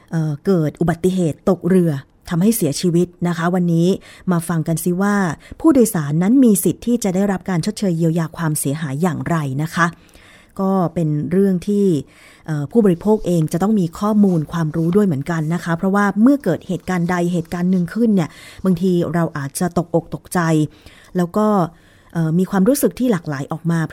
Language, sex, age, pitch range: Thai, female, 20-39, 160-200 Hz